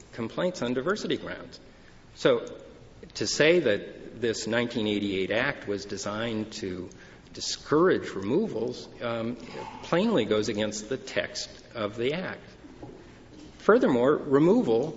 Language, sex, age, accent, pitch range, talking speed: English, male, 50-69, American, 100-120 Hz, 110 wpm